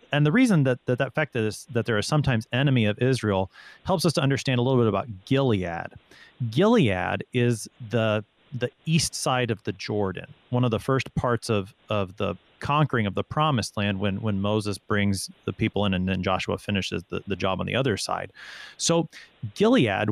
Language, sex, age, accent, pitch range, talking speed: English, male, 30-49, American, 100-130 Hz, 195 wpm